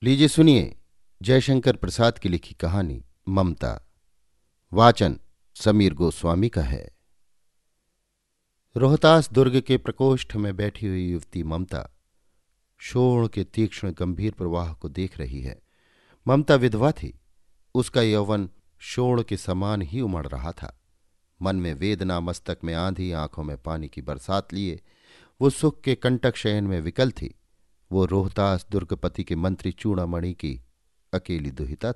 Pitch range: 85-115 Hz